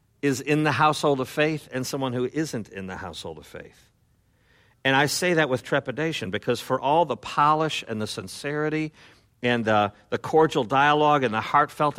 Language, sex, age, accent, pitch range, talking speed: English, male, 50-69, American, 110-145 Hz, 185 wpm